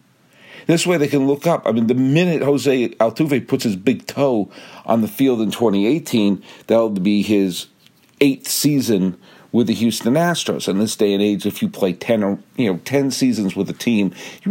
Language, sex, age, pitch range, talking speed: English, male, 50-69, 100-135 Hz, 200 wpm